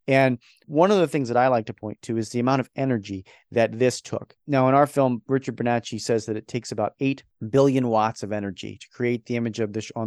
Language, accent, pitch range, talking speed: English, American, 120-155 Hz, 250 wpm